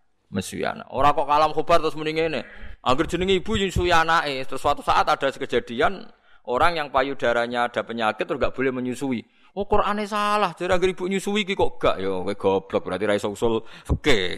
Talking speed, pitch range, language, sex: 190 wpm, 110-170 Hz, Indonesian, male